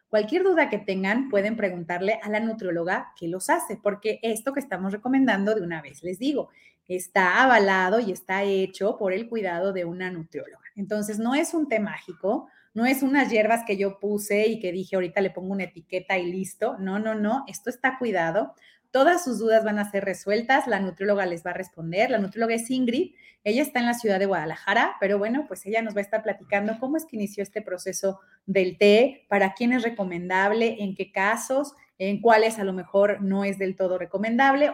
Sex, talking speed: female, 205 wpm